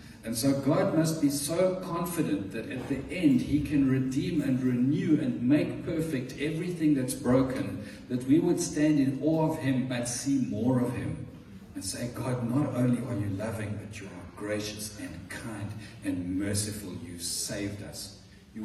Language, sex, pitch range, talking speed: English, male, 105-140 Hz, 175 wpm